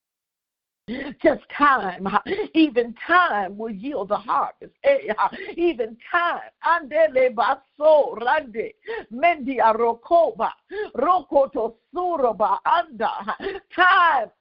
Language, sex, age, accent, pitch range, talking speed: English, female, 50-69, American, 235-335 Hz, 85 wpm